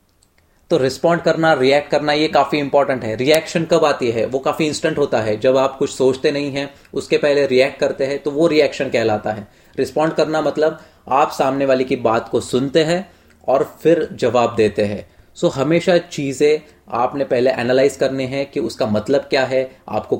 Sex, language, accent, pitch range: male, Hindi, native, 120-155 Hz